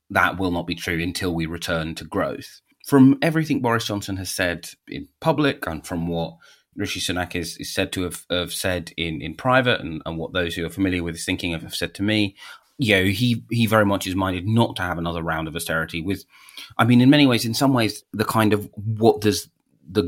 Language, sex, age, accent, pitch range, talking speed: English, male, 30-49, British, 85-105 Hz, 230 wpm